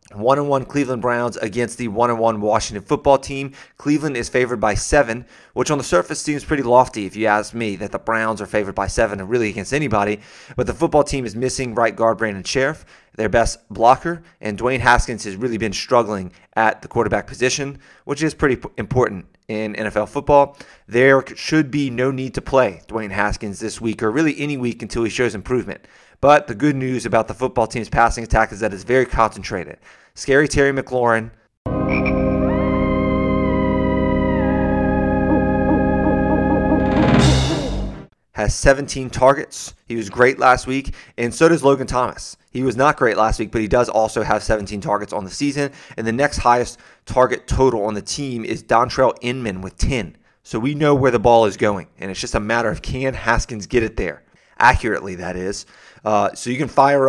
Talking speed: 185 wpm